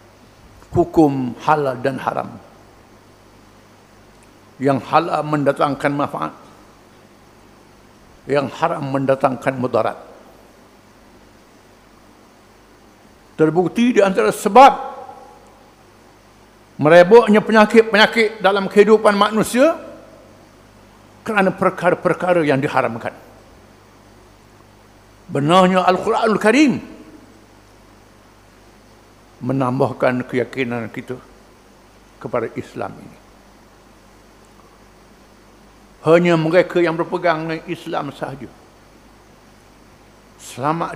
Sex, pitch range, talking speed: male, 110-165 Hz, 60 wpm